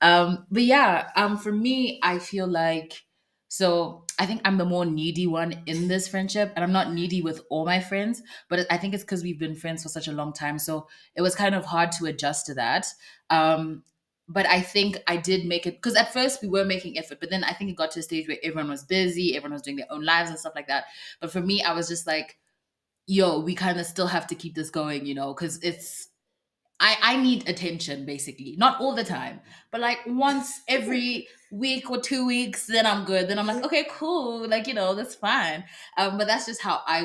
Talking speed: 235 wpm